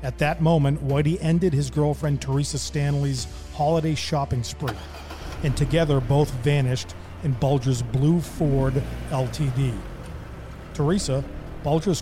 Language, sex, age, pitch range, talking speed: English, male, 40-59, 130-165 Hz, 115 wpm